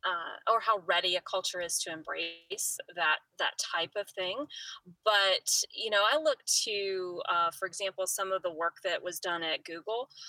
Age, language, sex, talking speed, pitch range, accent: 20-39, English, female, 185 wpm, 165-200 Hz, American